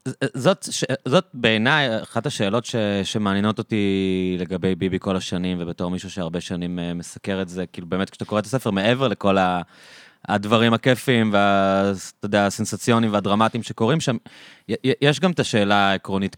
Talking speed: 140 wpm